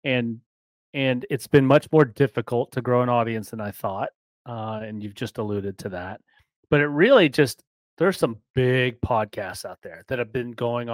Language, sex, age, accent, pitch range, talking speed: English, male, 30-49, American, 110-135 Hz, 190 wpm